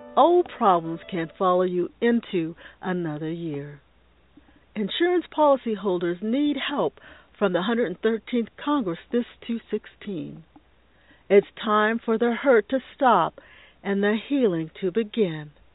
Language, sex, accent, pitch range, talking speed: English, female, American, 180-285 Hz, 115 wpm